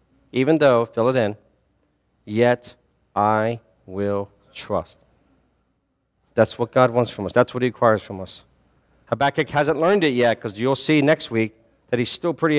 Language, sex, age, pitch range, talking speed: English, male, 40-59, 110-135 Hz, 165 wpm